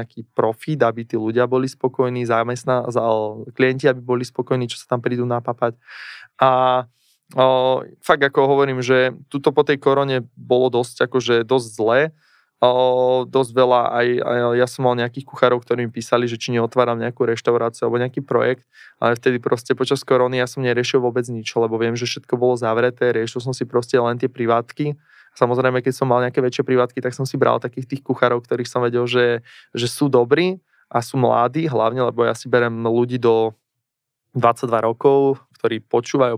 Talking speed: 185 wpm